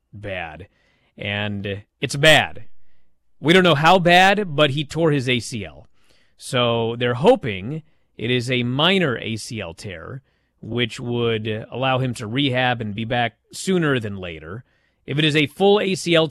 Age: 30-49